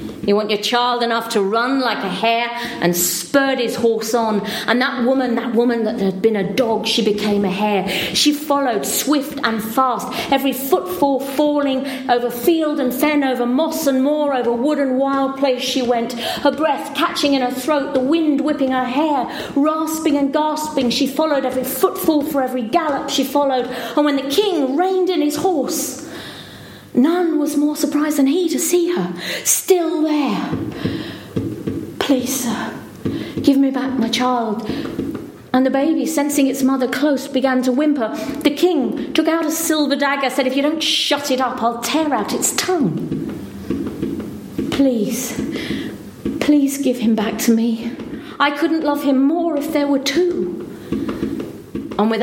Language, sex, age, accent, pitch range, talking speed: English, female, 40-59, British, 240-300 Hz, 170 wpm